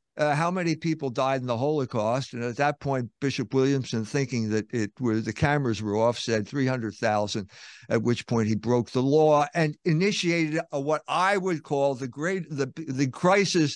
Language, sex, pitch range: English, male, 120-165 Hz